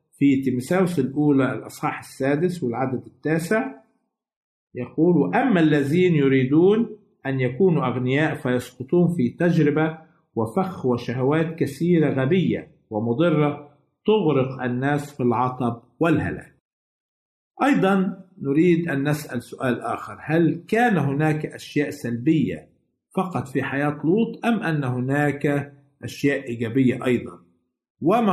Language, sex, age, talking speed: Arabic, male, 50-69, 105 wpm